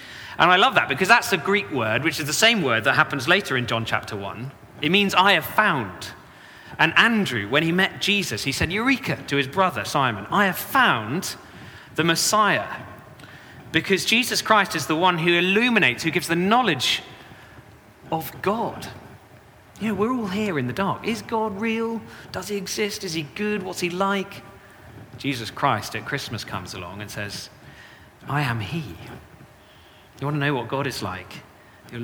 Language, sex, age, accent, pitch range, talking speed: English, male, 30-49, British, 125-185 Hz, 185 wpm